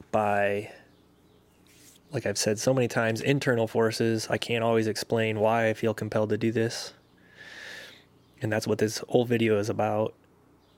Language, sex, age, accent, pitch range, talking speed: English, male, 20-39, American, 105-120 Hz, 155 wpm